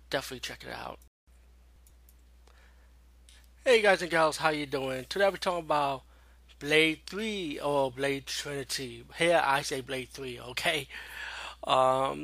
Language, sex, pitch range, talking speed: English, male, 115-160 Hz, 130 wpm